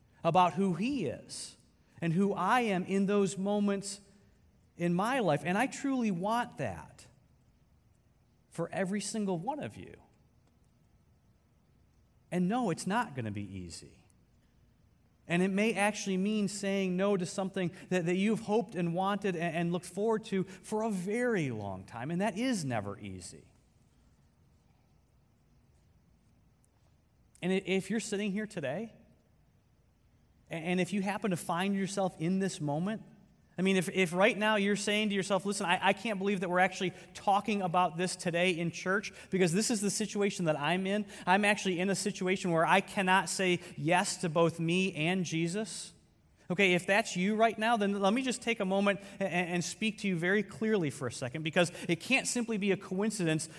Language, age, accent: English, 40-59, American